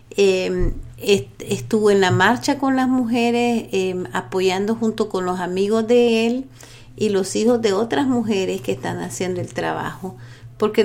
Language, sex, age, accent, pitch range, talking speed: English, female, 50-69, American, 175-225 Hz, 155 wpm